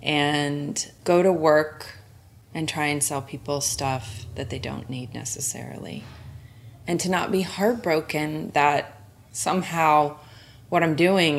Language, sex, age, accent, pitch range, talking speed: English, female, 20-39, American, 145-205 Hz, 130 wpm